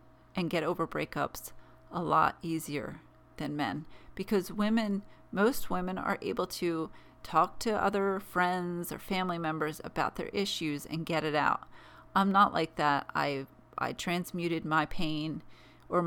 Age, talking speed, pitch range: 40-59, 150 wpm, 160-210 Hz